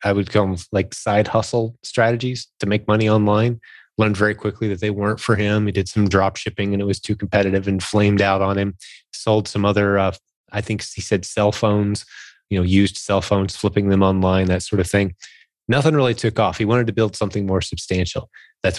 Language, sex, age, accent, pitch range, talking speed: English, male, 30-49, American, 95-115 Hz, 215 wpm